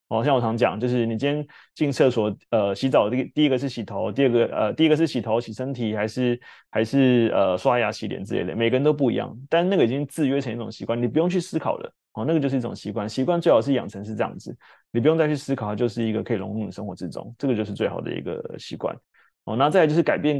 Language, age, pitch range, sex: Chinese, 20-39, 110-145 Hz, male